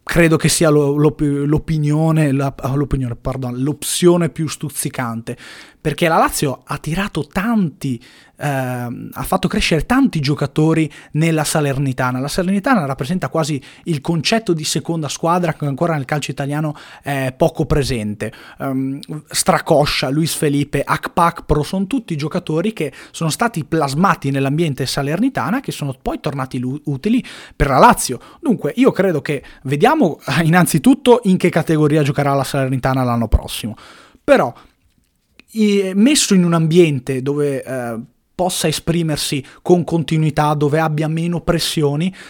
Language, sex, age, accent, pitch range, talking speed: Italian, male, 30-49, native, 135-165 Hz, 135 wpm